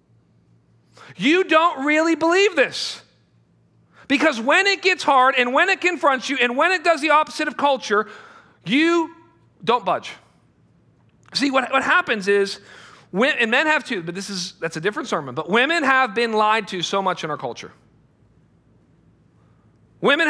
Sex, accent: male, American